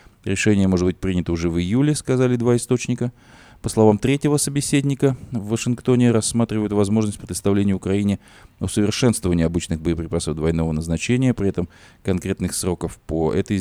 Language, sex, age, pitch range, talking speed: Russian, male, 20-39, 85-110 Hz, 135 wpm